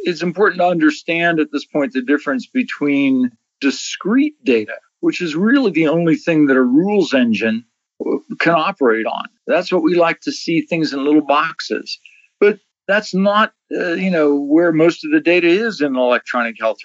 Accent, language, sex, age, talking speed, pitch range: American, English, male, 50-69, 180 wpm, 140-190 Hz